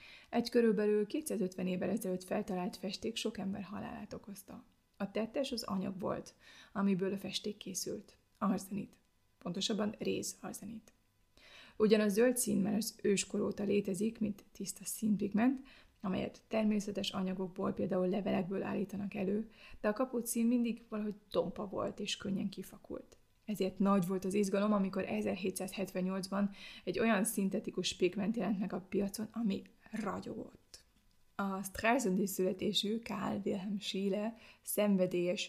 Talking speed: 130 wpm